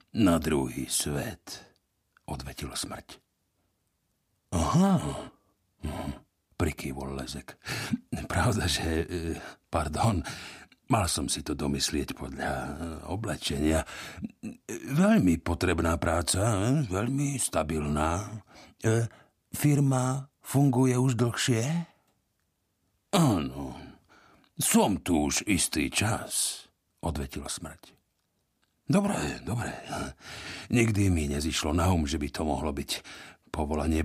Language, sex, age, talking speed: Slovak, male, 60-79, 85 wpm